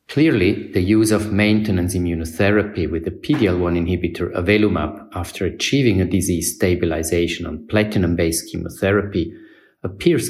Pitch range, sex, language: 85-110 Hz, male, English